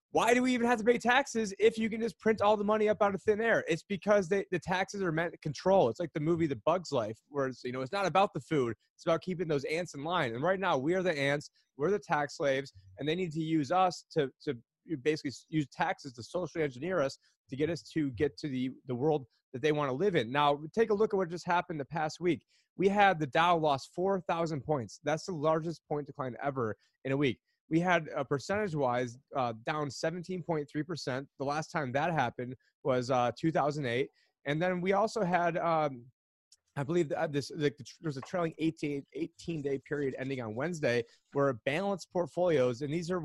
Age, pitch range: 30-49, 140-180 Hz